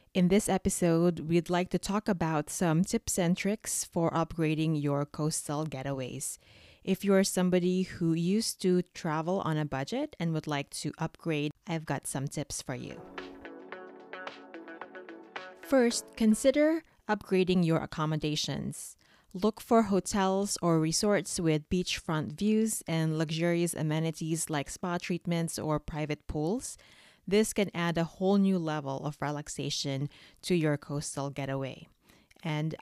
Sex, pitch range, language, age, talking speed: female, 150-185 Hz, English, 20-39, 135 wpm